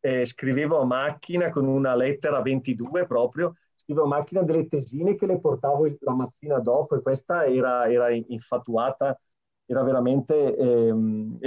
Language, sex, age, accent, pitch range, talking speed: Italian, male, 30-49, native, 125-145 Hz, 145 wpm